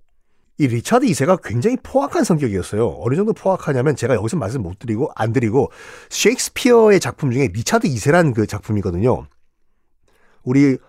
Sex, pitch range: male, 115-190 Hz